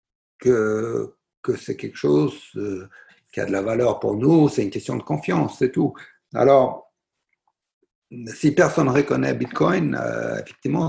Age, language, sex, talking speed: 60-79, French, male, 155 wpm